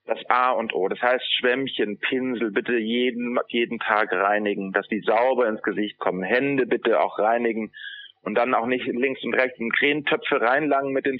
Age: 30-49